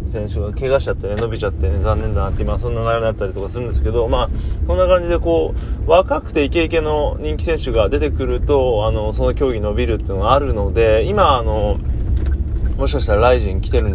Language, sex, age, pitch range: Japanese, male, 20-39, 95-120 Hz